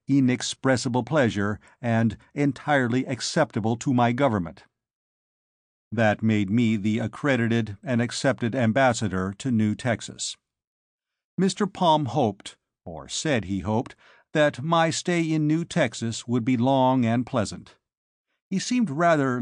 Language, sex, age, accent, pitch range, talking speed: English, male, 50-69, American, 115-145 Hz, 125 wpm